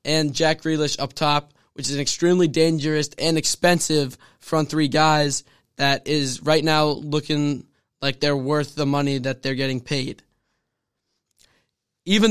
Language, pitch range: English, 140-160 Hz